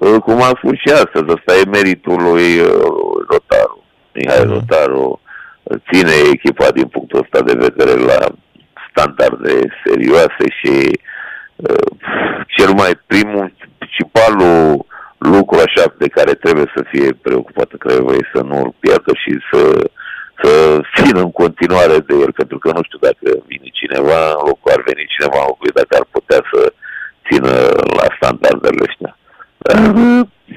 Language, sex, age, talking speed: Romanian, male, 50-69, 145 wpm